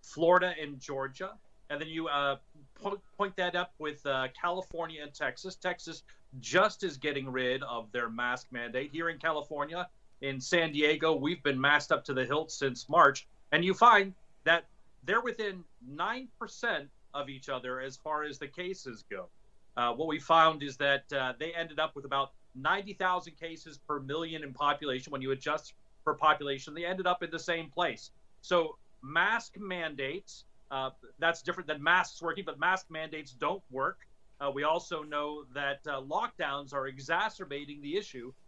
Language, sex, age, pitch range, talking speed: English, male, 40-59, 145-180 Hz, 175 wpm